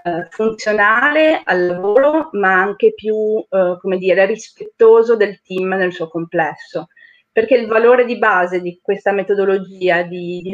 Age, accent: 30-49, native